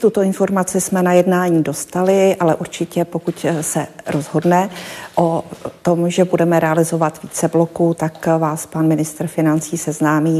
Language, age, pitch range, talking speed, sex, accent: Czech, 40-59, 155-170 Hz, 140 wpm, female, native